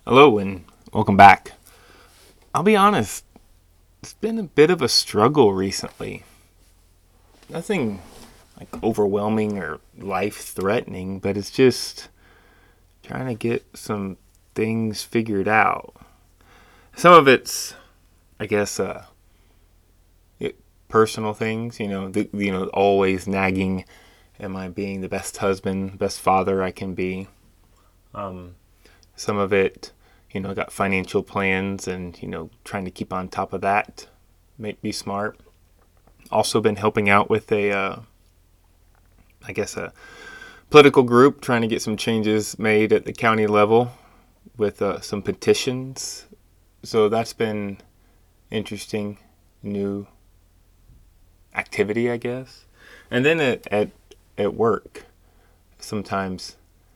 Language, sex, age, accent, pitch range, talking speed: English, male, 20-39, American, 85-105 Hz, 125 wpm